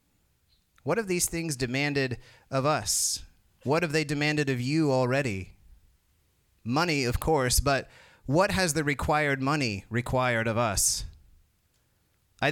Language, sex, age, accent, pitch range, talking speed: English, male, 30-49, American, 105-140 Hz, 130 wpm